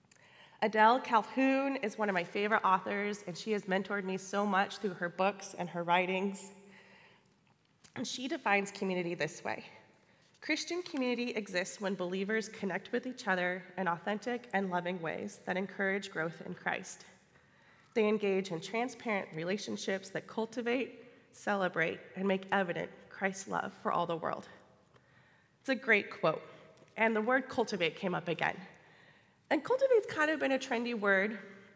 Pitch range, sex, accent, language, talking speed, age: 185-225 Hz, female, American, English, 155 wpm, 20-39